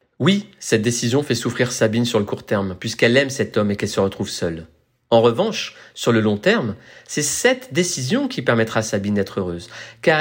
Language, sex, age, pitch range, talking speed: French, male, 40-59, 110-140 Hz, 205 wpm